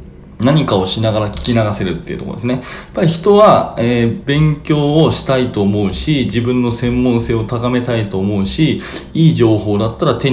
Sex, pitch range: male, 105-150 Hz